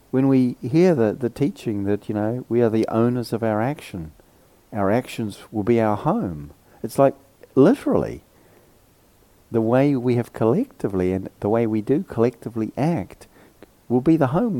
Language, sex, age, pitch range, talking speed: English, male, 50-69, 105-135 Hz, 170 wpm